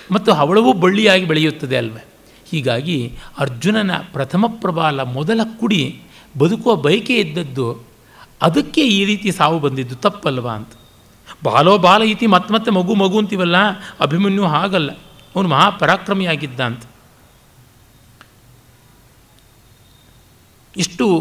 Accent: native